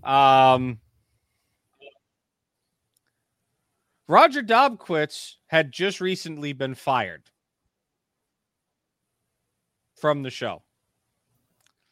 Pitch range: 125-165 Hz